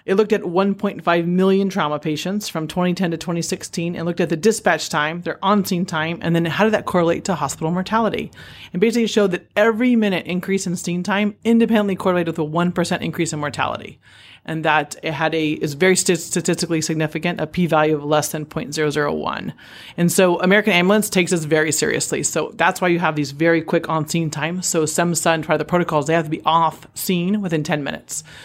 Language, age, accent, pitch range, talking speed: English, 30-49, American, 160-190 Hz, 210 wpm